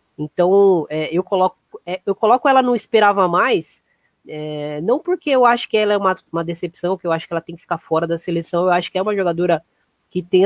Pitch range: 165-200 Hz